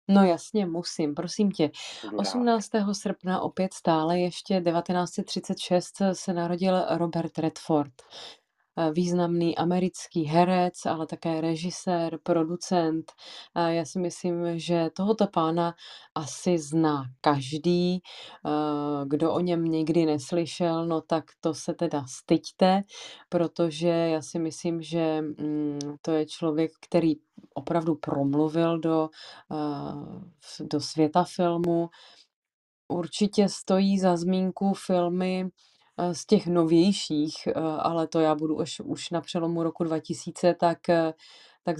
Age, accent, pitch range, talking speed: 30-49, native, 155-175 Hz, 110 wpm